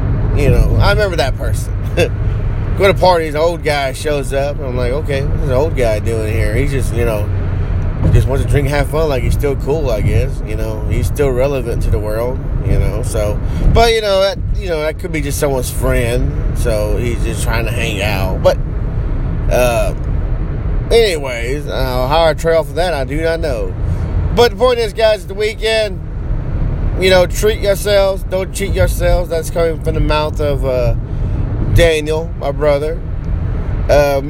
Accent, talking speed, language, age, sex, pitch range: American, 190 wpm, English, 20-39, male, 105-150 Hz